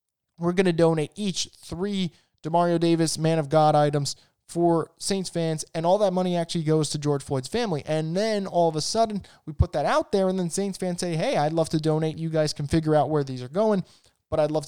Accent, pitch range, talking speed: American, 150-180 Hz, 235 wpm